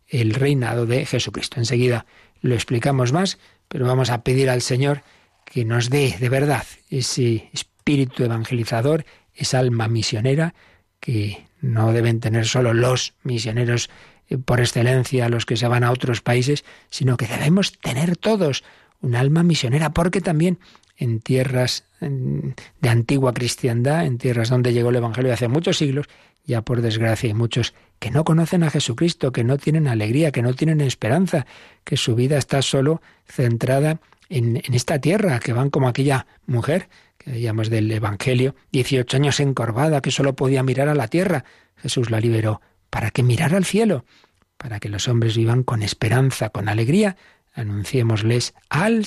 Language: Spanish